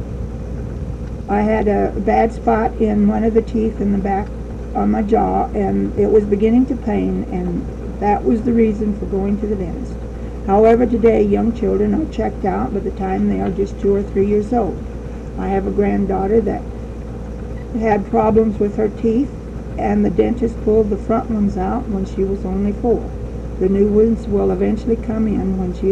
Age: 60-79